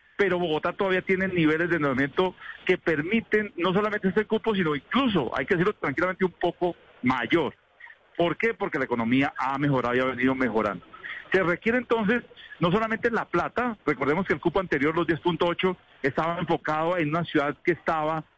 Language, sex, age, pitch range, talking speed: Spanish, male, 50-69, 150-195 Hz, 175 wpm